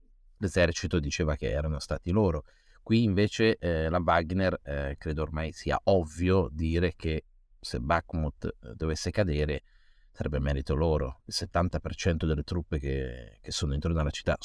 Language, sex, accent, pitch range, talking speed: Italian, male, native, 80-100 Hz, 150 wpm